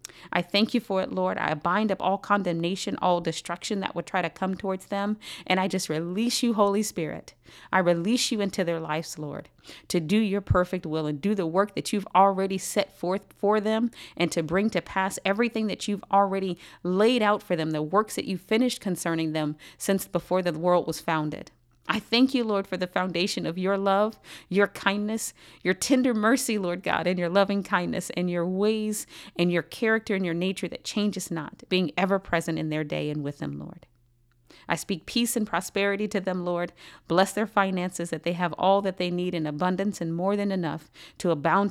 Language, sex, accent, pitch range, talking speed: English, female, American, 165-205 Hz, 210 wpm